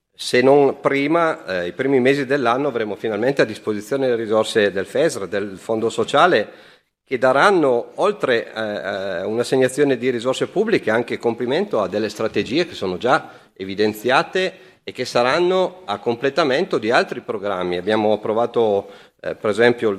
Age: 40-59